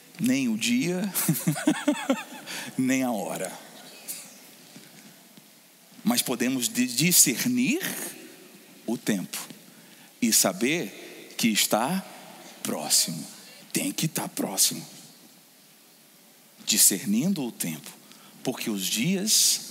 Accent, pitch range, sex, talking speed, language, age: Brazilian, 155-225 Hz, male, 80 wpm, Portuguese, 40-59